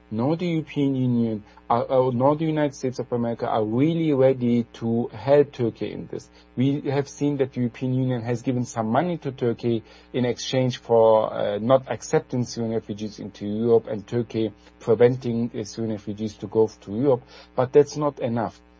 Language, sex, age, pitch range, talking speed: Arabic, male, 50-69, 110-140 Hz, 175 wpm